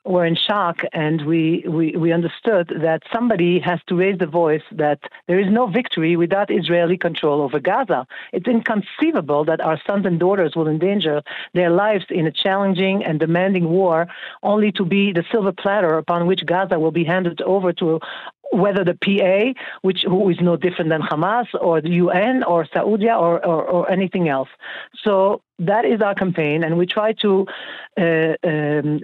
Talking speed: 180 wpm